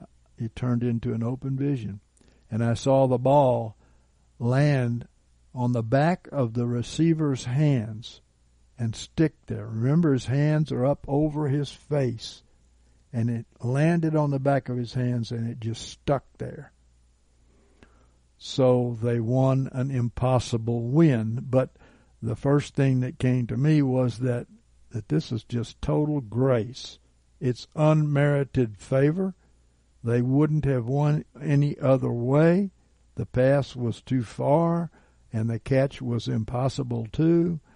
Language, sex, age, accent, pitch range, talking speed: English, male, 60-79, American, 110-140 Hz, 140 wpm